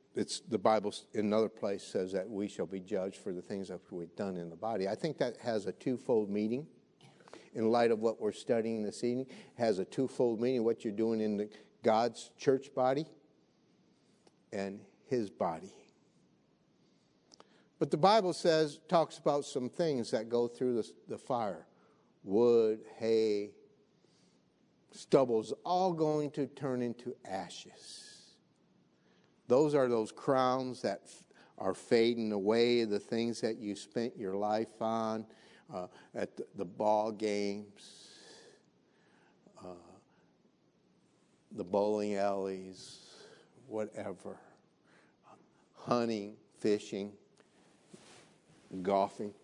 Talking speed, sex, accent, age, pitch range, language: 130 wpm, male, American, 60-79, 105-120 Hz, English